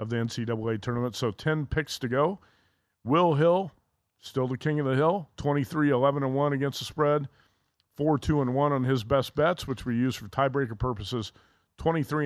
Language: English